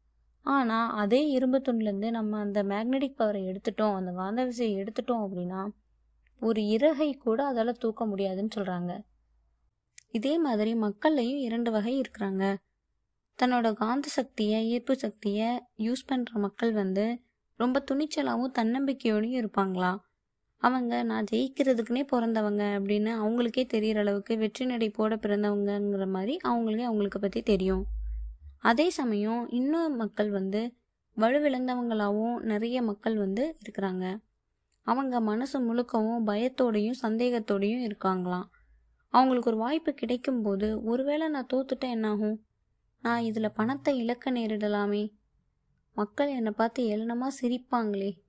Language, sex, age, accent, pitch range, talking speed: Tamil, female, 20-39, native, 205-245 Hz, 115 wpm